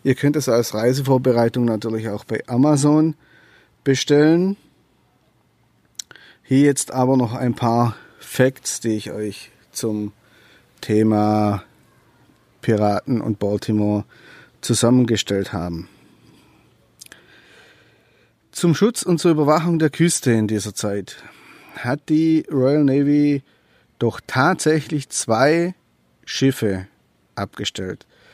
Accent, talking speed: German, 95 wpm